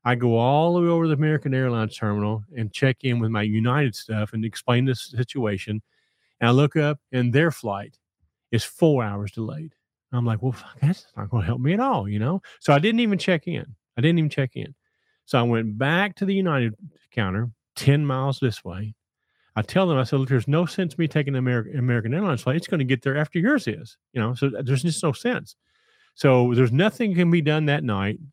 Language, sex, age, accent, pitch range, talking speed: English, male, 40-59, American, 115-150 Hz, 230 wpm